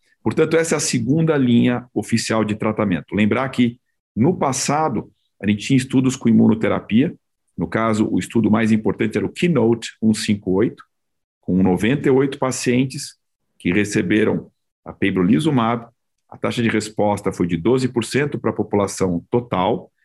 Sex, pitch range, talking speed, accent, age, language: male, 105-125 Hz, 140 wpm, Brazilian, 50-69, Portuguese